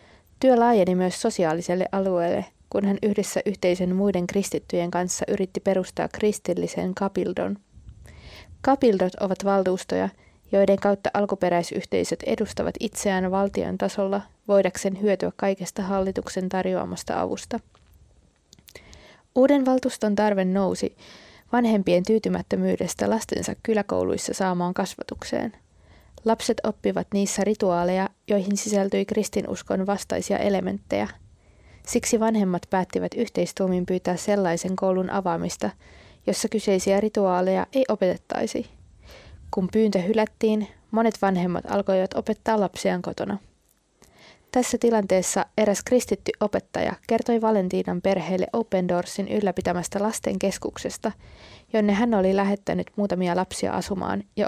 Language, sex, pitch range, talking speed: Finnish, female, 185-215 Hz, 105 wpm